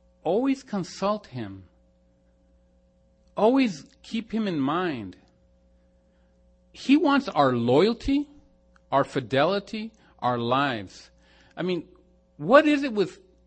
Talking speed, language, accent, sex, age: 100 wpm, English, American, male, 40-59